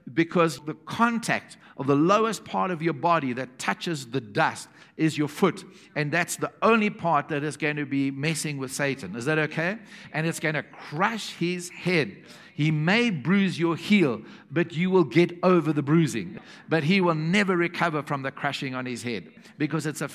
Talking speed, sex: 195 wpm, male